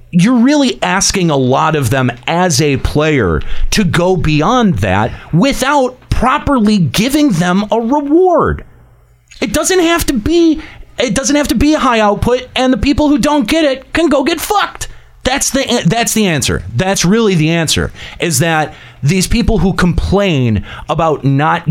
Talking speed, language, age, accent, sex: 170 wpm, English, 40-59, American, male